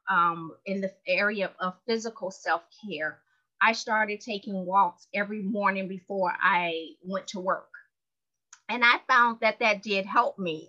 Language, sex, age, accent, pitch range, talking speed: English, female, 30-49, American, 190-235 Hz, 150 wpm